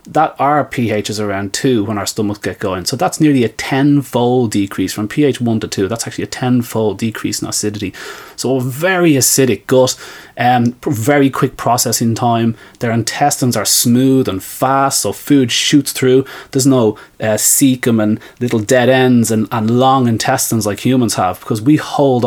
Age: 30-49